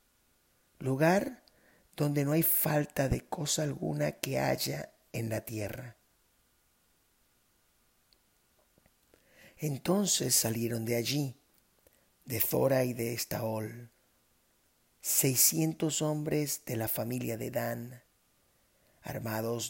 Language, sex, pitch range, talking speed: Spanish, male, 110-135 Hz, 90 wpm